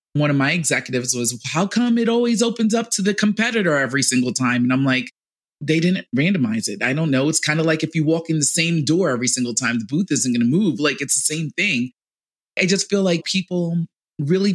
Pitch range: 135-175 Hz